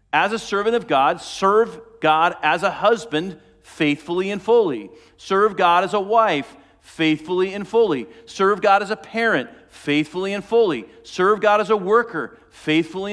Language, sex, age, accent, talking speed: English, male, 40-59, American, 160 wpm